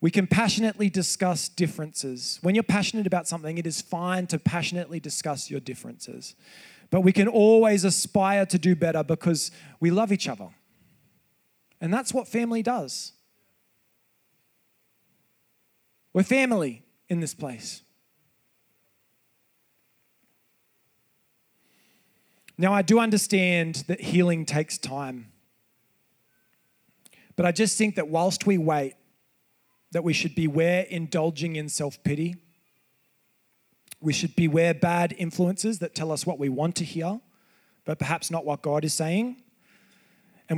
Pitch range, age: 160-200 Hz, 20-39